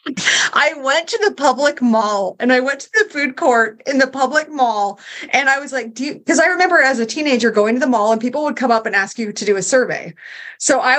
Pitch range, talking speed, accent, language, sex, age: 195-255 Hz, 255 wpm, American, English, female, 30-49